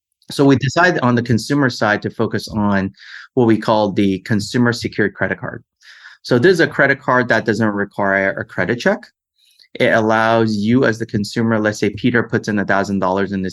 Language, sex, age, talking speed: English, male, 30-49, 195 wpm